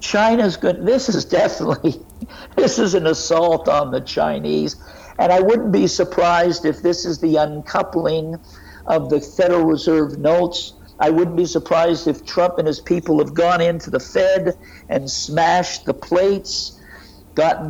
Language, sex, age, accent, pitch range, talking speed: English, male, 60-79, American, 150-190 Hz, 155 wpm